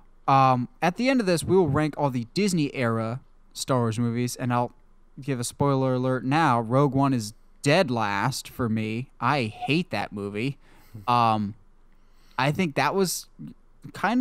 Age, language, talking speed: 10-29, English, 165 wpm